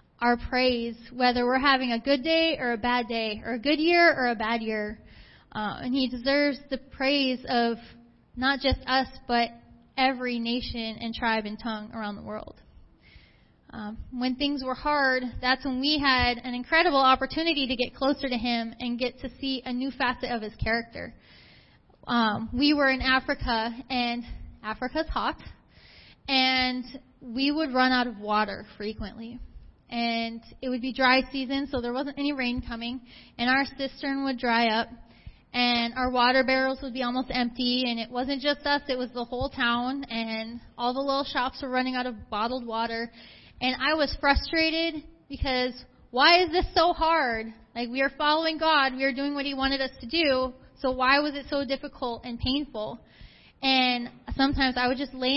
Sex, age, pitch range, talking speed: female, 10-29, 240-275 Hz, 180 wpm